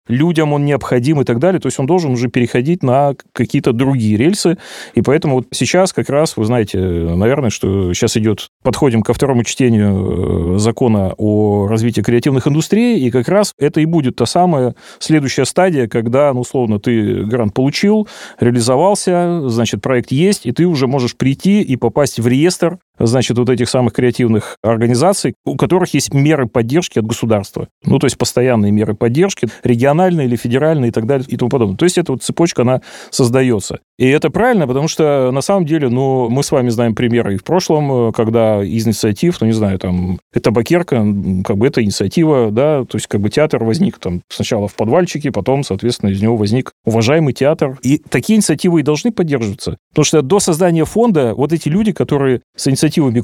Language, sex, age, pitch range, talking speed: Russian, male, 30-49, 115-155 Hz, 185 wpm